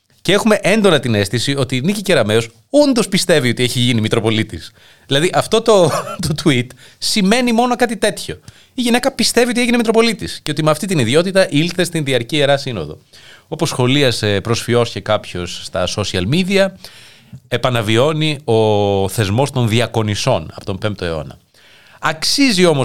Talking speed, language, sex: 160 wpm, Greek, male